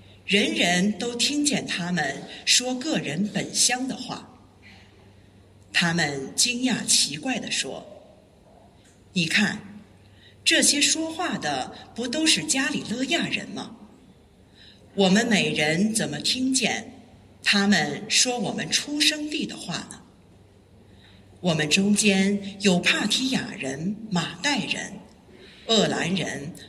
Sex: female